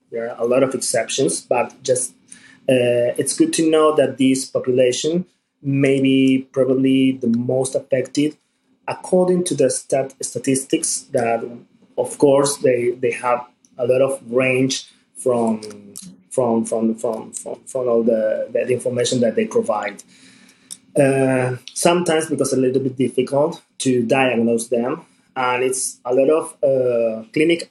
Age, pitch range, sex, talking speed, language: 30-49, 125-155 Hz, male, 145 wpm, English